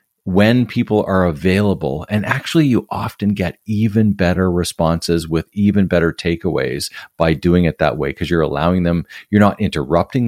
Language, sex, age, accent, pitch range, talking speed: English, male, 50-69, American, 85-105 Hz, 165 wpm